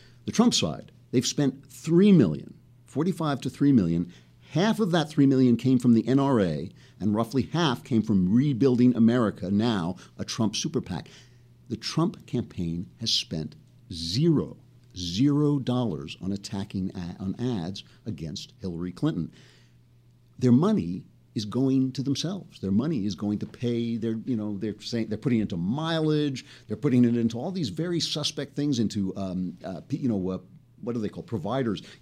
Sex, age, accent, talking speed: male, 50-69, American, 170 wpm